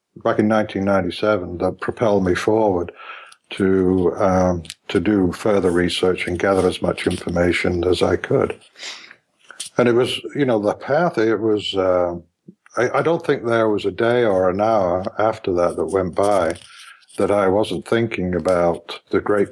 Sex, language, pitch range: male, English, 90-105 Hz